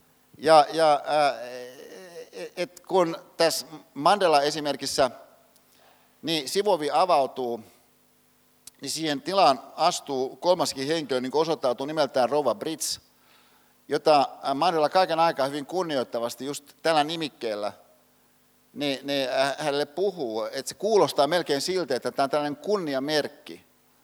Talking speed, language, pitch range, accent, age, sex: 105 wpm, Finnish, 130-165 Hz, native, 50-69, male